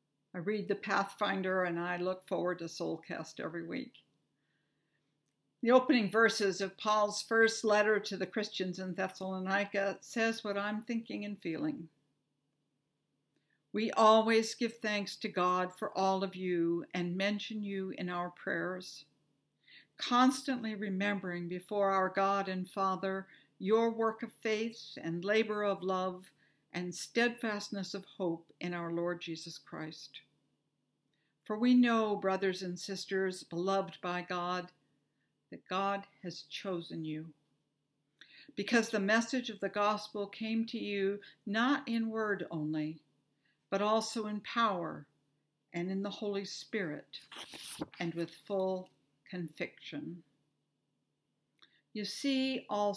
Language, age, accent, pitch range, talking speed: English, 60-79, American, 160-210 Hz, 130 wpm